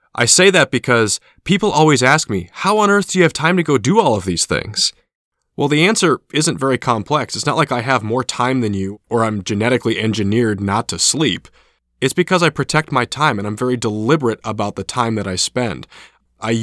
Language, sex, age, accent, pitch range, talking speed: English, male, 20-39, American, 110-150 Hz, 220 wpm